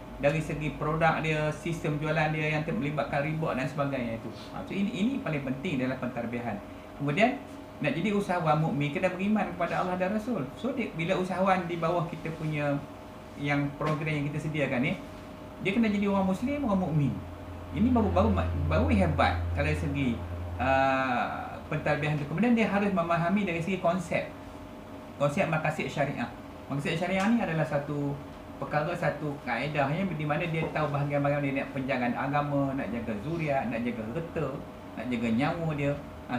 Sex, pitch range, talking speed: male, 140-185 Hz, 165 wpm